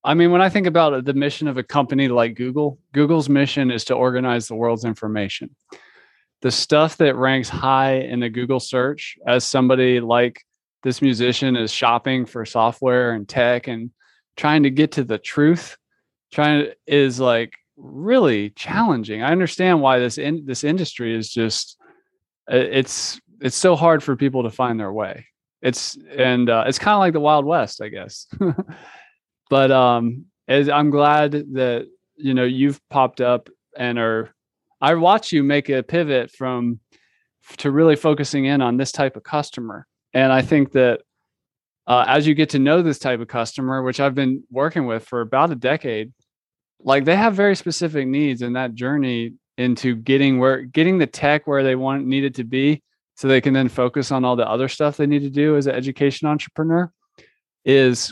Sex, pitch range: male, 125-150 Hz